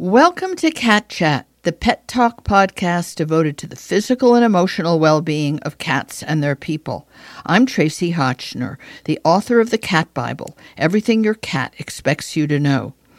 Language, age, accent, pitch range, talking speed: English, 50-69, American, 145-190 Hz, 165 wpm